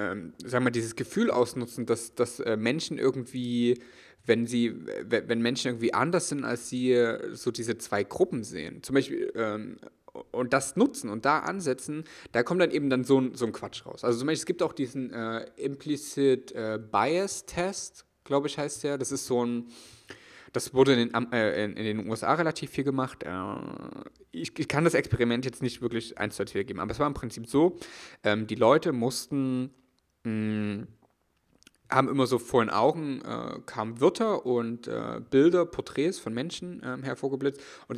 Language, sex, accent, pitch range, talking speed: German, male, German, 115-140 Hz, 185 wpm